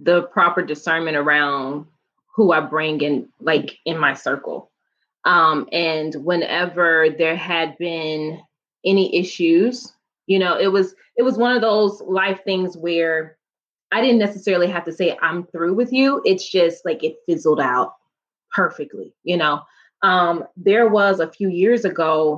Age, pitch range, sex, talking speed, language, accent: 20-39, 155-190 Hz, female, 155 wpm, English, American